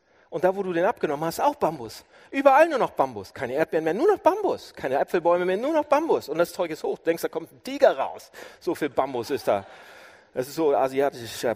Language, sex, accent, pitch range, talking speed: German, male, German, 160-215 Hz, 240 wpm